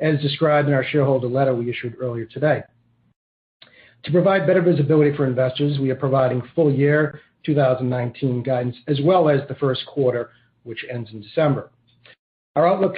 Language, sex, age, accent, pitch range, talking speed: English, male, 40-59, American, 130-160 Hz, 160 wpm